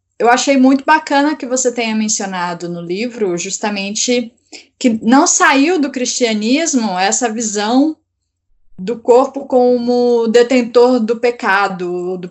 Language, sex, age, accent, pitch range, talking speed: Portuguese, female, 10-29, Brazilian, 185-235 Hz, 120 wpm